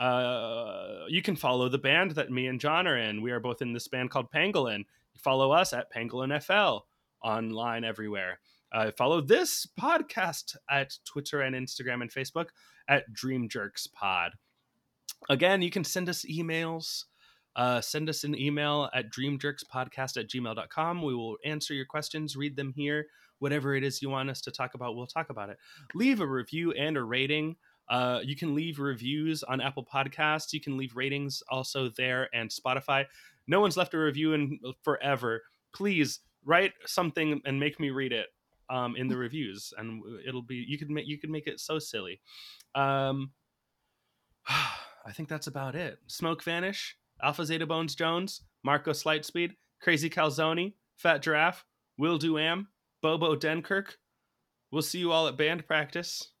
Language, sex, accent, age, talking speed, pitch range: English, male, American, 20-39, 170 wpm, 130-160 Hz